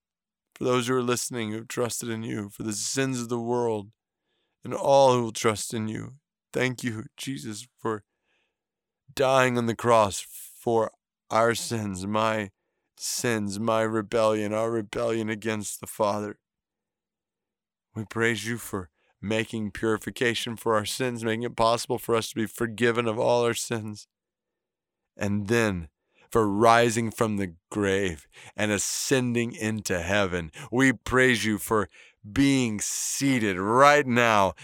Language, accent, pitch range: English, American, 110-130 Hz